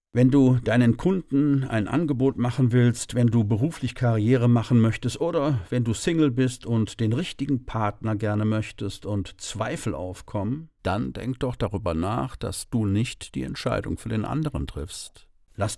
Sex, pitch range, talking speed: male, 100-130 Hz, 165 wpm